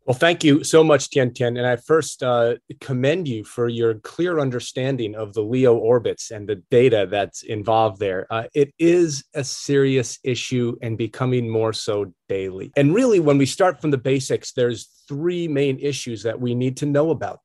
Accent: American